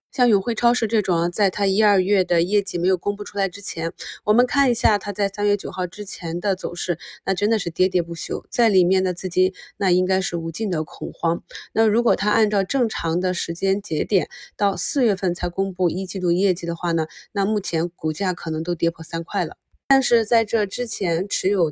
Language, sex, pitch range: Chinese, female, 170-205 Hz